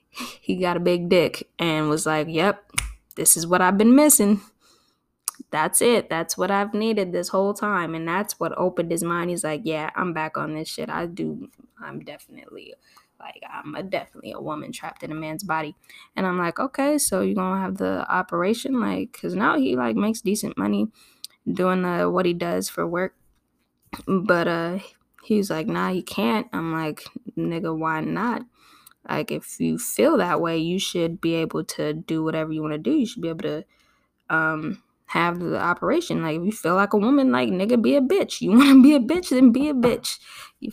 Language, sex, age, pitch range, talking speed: English, female, 10-29, 160-205 Hz, 205 wpm